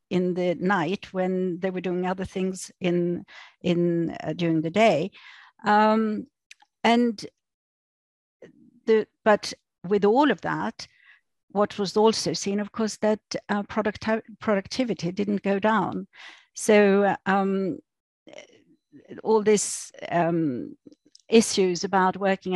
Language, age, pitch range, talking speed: German, 60-79, 185-220 Hz, 115 wpm